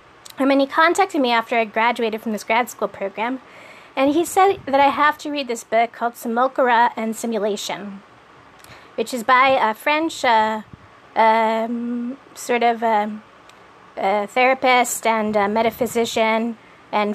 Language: English